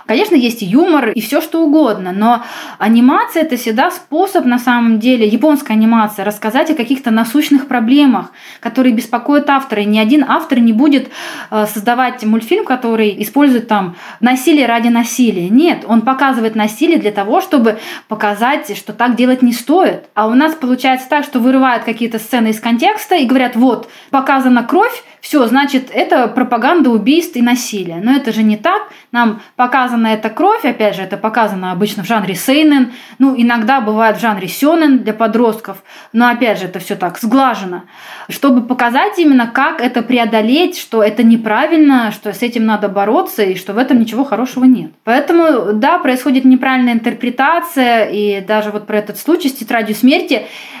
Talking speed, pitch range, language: 170 wpm, 220-275 Hz, Russian